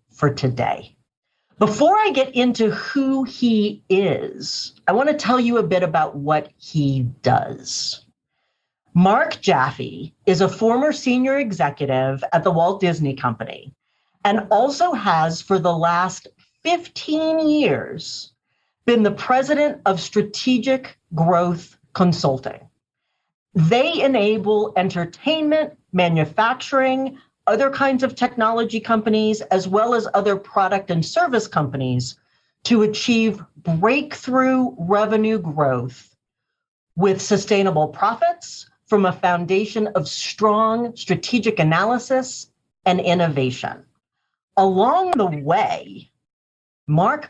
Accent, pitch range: American, 155-235 Hz